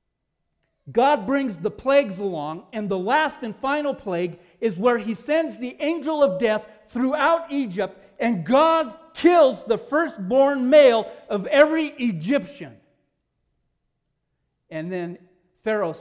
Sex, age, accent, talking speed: male, 50-69, American, 125 wpm